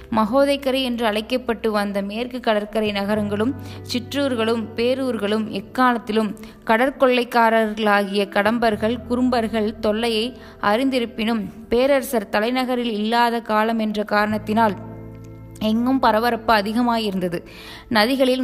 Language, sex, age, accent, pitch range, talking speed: Tamil, female, 20-39, native, 210-245 Hz, 80 wpm